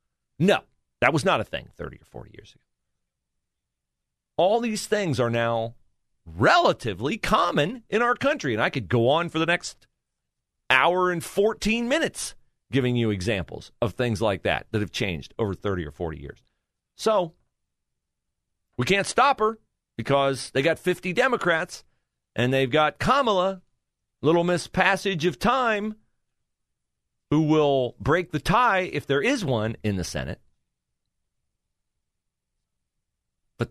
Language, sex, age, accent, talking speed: English, male, 40-59, American, 140 wpm